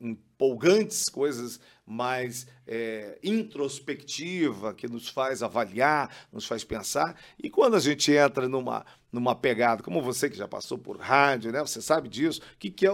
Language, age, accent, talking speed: Portuguese, 50-69, Brazilian, 155 wpm